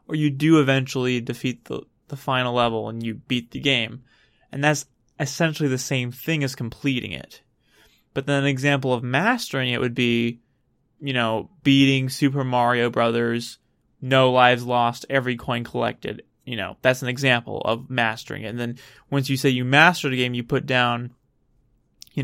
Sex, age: male, 20-39